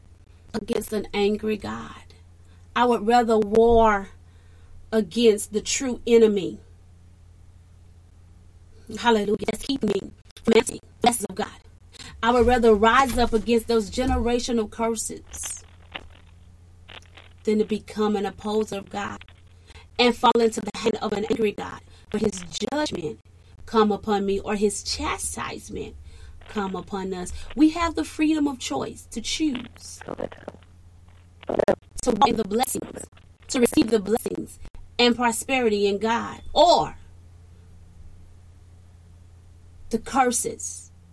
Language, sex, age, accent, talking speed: English, female, 30-49, American, 115 wpm